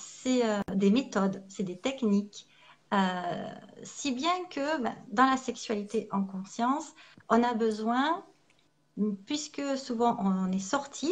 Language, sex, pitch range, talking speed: French, female, 195-250 Hz, 135 wpm